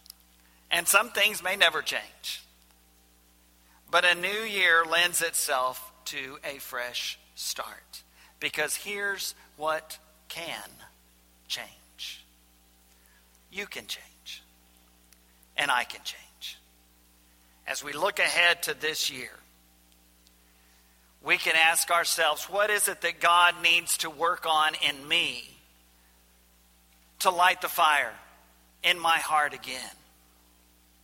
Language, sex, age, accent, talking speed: English, male, 50-69, American, 110 wpm